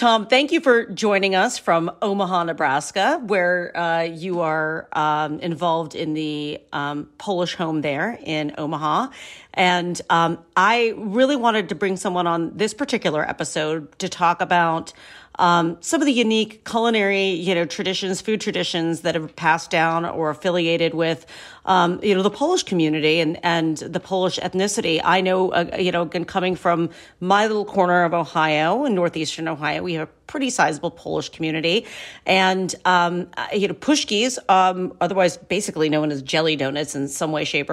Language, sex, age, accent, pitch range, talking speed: English, female, 40-59, American, 165-195 Hz, 165 wpm